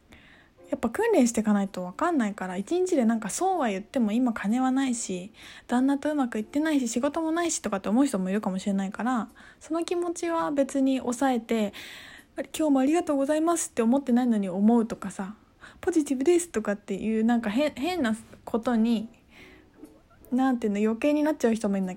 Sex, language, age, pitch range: female, Japanese, 20-39, 220-300 Hz